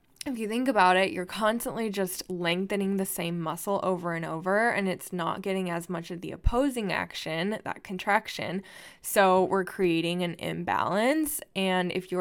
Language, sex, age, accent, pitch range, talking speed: English, female, 10-29, American, 175-205 Hz, 170 wpm